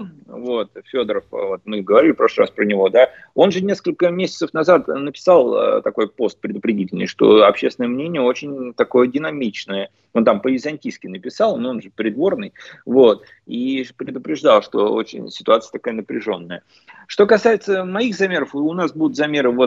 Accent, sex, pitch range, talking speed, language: native, male, 130-195 Hz, 145 wpm, Russian